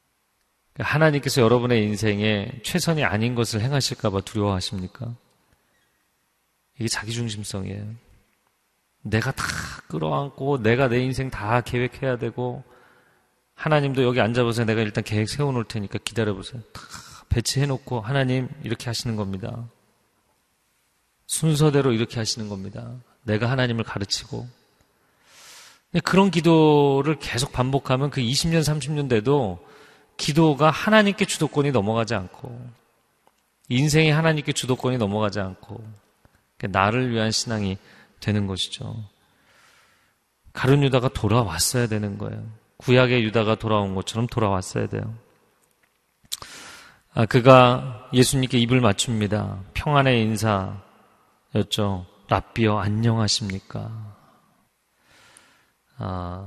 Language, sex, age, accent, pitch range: Korean, male, 40-59, native, 105-130 Hz